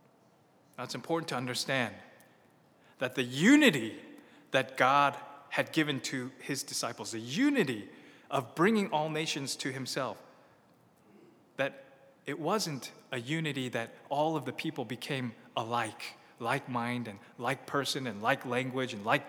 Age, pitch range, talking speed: 30-49, 125-160 Hz, 140 wpm